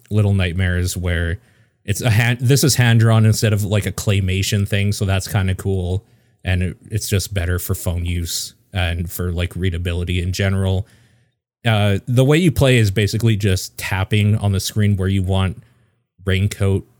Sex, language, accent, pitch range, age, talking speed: male, English, American, 95-110 Hz, 30-49, 180 wpm